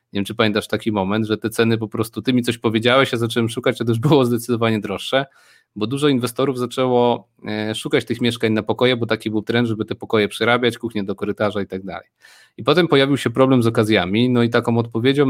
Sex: male